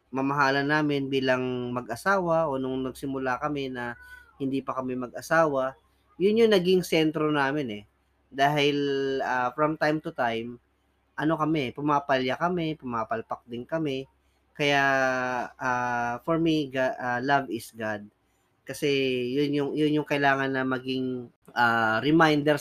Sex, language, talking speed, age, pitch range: female, Filipino, 135 wpm, 20-39, 125-155 Hz